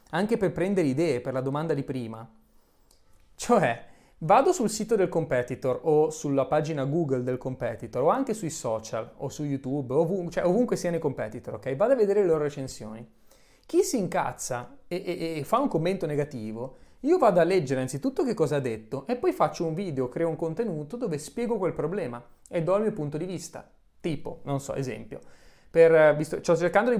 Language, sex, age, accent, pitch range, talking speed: Italian, male, 30-49, native, 135-210 Hz, 195 wpm